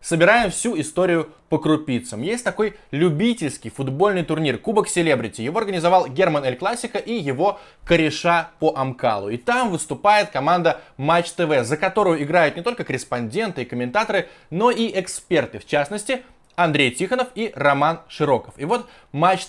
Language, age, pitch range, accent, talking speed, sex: Russian, 20-39, 145-210 Hz, native, 150 wpm, male